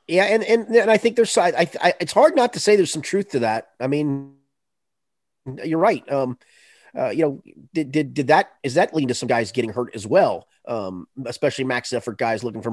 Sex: male